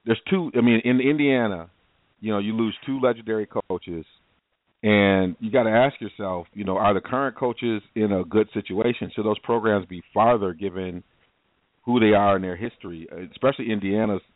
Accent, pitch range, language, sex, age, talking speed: American, 95-115 Hz, English, male, 40-59, 180 wpm